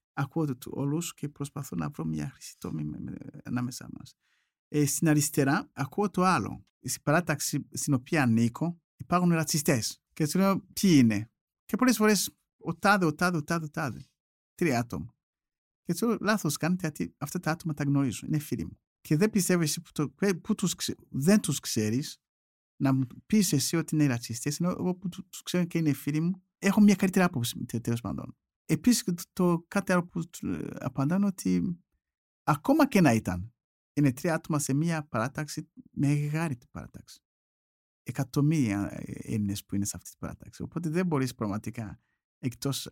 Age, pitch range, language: 50-69, 115-170 Hz, Greek